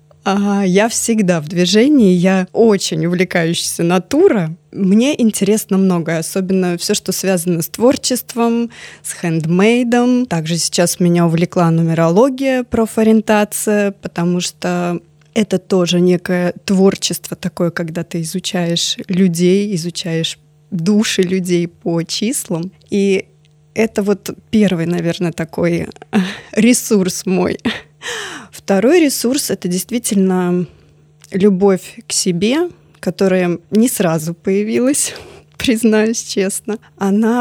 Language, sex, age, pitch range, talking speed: Russian, female, 20-39, 175-220 Hz, 100 wpm